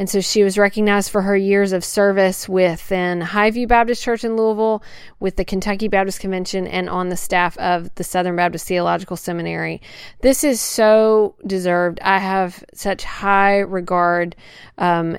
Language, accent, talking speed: English, American, 160 wpm